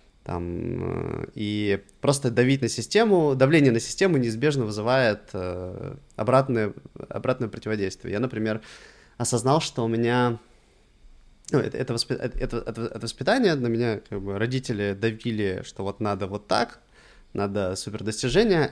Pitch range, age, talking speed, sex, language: 105-135 Hz, 20-39, 120 wpm, male, Russian